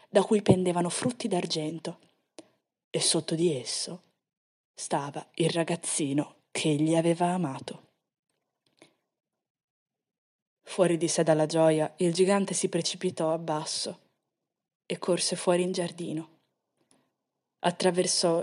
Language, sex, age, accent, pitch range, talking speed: Italian, female, 20-39, native, 160-190 Hz, 105 wpm